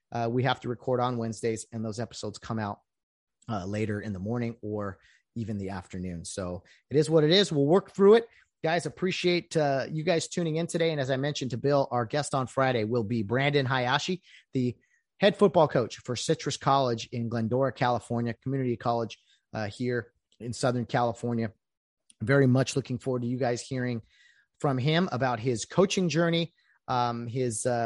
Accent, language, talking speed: American, English, 185 wpm